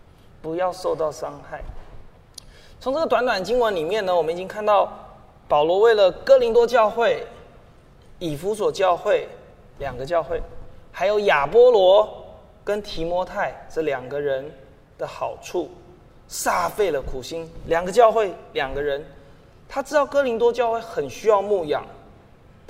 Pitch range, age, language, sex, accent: 180-260 Hz, 20-39, Chinese, male, native